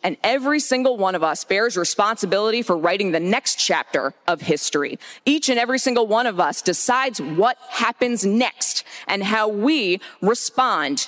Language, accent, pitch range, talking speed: English, American, 175-235 Hz, 165 wpm